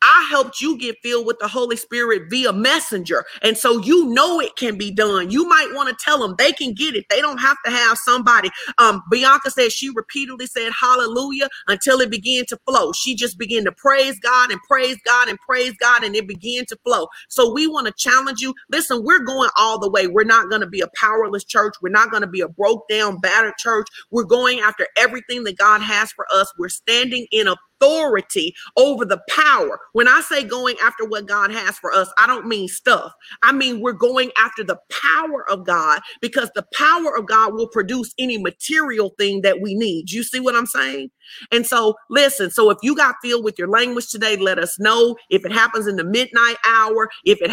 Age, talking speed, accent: 40-59, 220 wpm, American